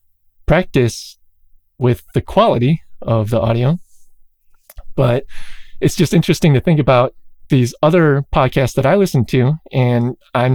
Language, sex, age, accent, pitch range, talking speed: English, male, 20-39, American, 120-150 Hz, 130 wpm